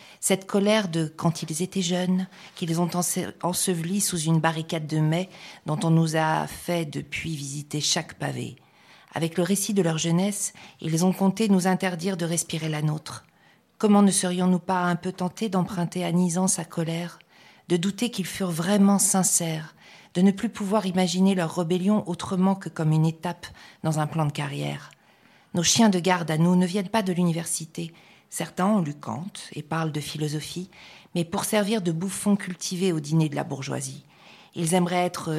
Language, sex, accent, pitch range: French, female, French, 160-190 Hz